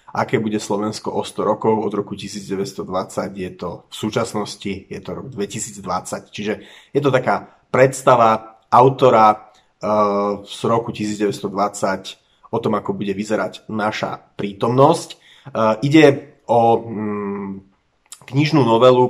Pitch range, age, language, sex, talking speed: 100-115 Hz, 30-49, Slovak, male, 115 wpm